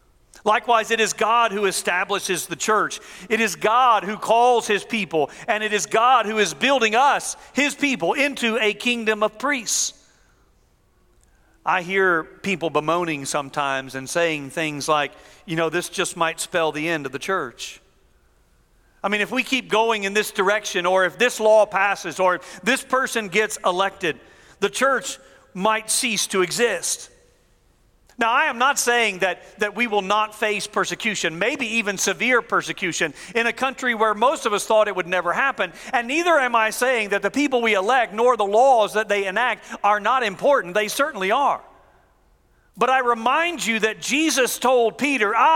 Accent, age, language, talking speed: American, 40-59, English, 175 wpm